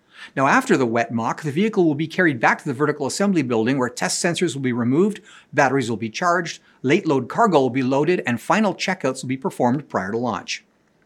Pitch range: 130-185 Hz